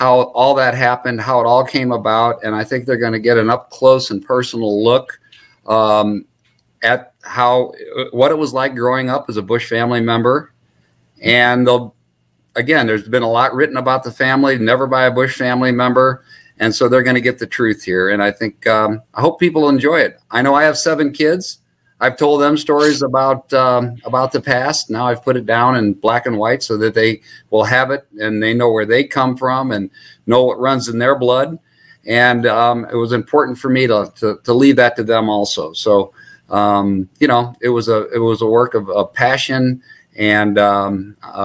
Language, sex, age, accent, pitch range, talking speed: English, male, 50-69, American, 110-130 Hz, 210 wpm